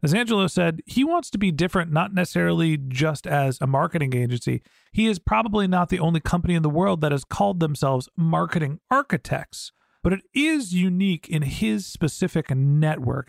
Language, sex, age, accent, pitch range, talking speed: English, male, 40-59, American, 145-180 Hz, 175 wpm